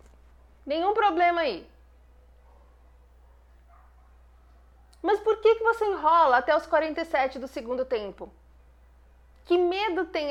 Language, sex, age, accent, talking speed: Portuguese, female, 30-49, Brazilian, 105 wpm